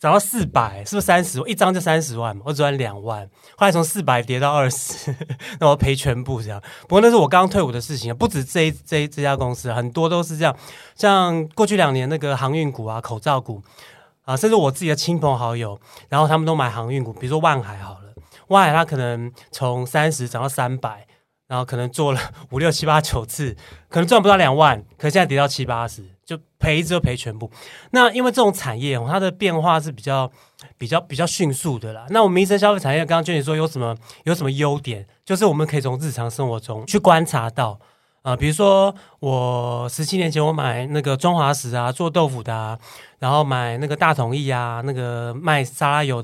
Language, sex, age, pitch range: Chinese, male, 30-49, 125-160 Hz